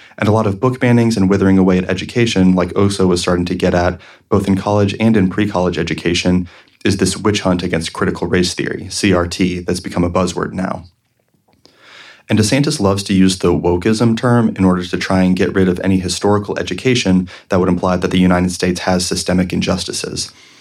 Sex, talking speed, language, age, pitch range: male, 200 wpm, English, 30-49, 90-100 Hz